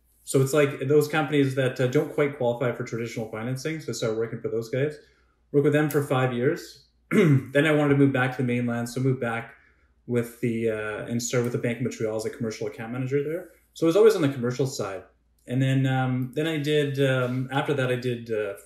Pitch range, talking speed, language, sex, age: 115-140 Hz, 240 wpm, English, male, 20-39